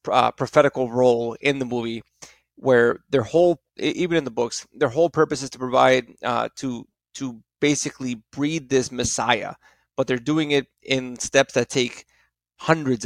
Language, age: English, 30-49